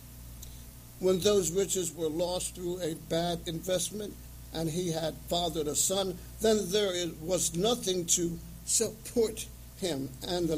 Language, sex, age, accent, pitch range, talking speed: English, male, 60-79, American, 130-180 Hz, 135 wpm